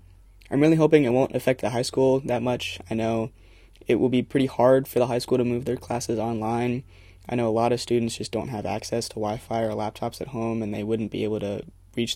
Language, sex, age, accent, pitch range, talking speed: English, male, 20-39, American, 105-120 Hz, 245 wpm